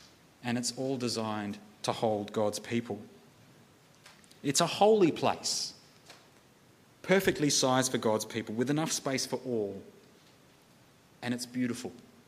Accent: Australian